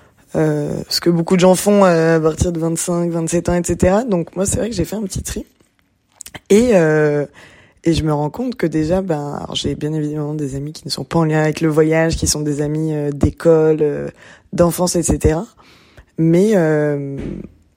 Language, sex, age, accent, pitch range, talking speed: French, female, 20-39, French, 150-170 Hz, 205 wpm